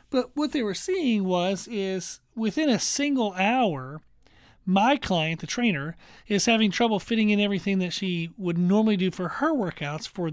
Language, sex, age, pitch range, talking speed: English, male, 40-59, 170-220 Hz, 175 wpm